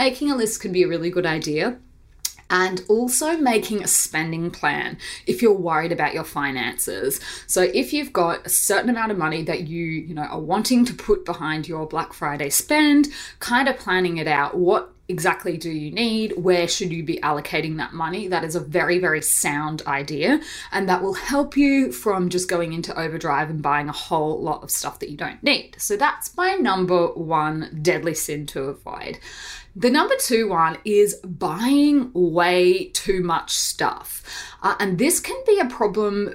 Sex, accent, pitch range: female, Australian, 165-240 Hz